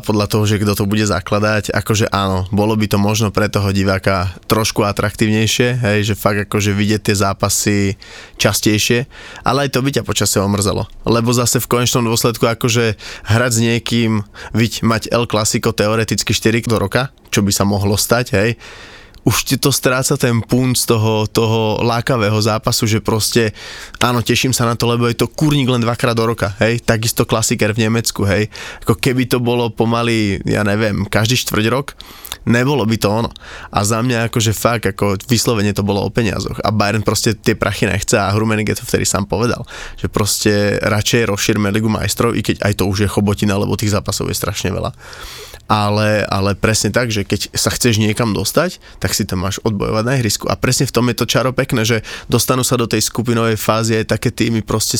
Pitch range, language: 105-120 Hz, Slovak